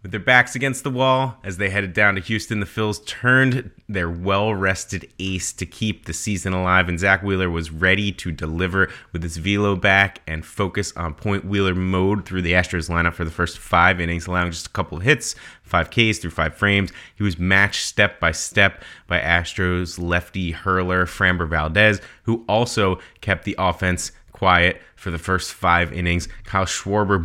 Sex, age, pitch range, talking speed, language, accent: male, 30-49, 90-105 Hz, 185 wpm, English, American